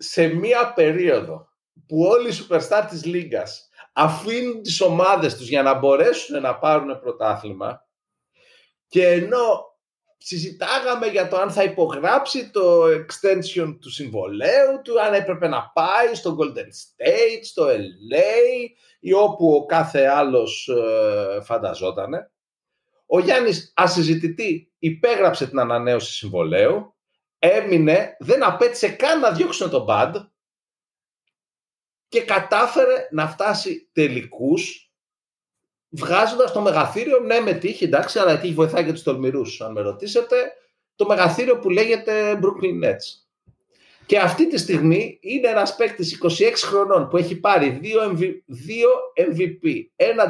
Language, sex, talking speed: Greek, male, 125 wpm